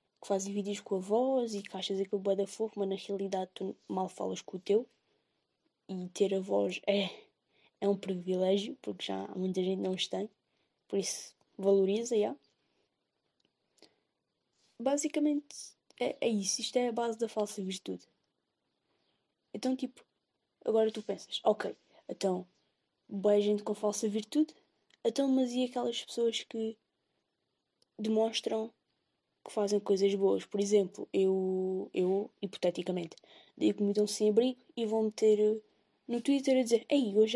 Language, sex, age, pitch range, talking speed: Portuguese, female, 20-39, 195-240 Hz, 160 wpm